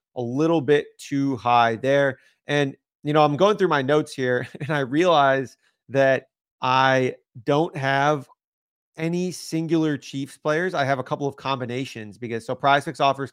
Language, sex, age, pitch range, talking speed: English, male, 30-49, 130-160 Hz, 165 wpm